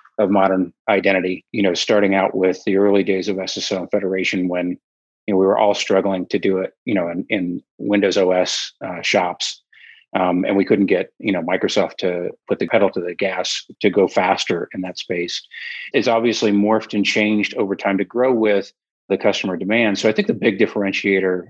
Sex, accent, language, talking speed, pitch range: male, American, English, 200 wpm, 95-105 Hz